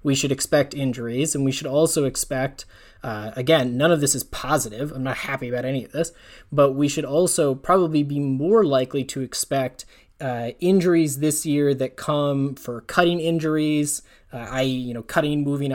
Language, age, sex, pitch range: English, 20-39, male, 130-155 Hz